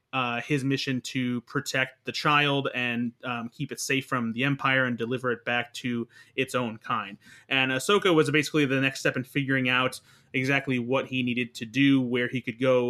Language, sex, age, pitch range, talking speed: English, male, 20-39, 125-145 Hz, 200 wpm